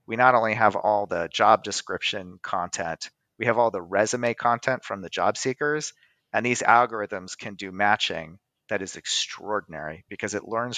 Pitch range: 105-135 Hz